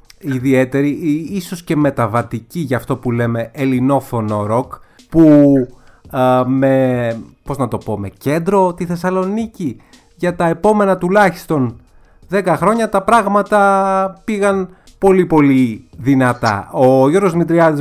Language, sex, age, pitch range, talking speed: Greek, male, 30-49, 115-165 Hz, 120 wpm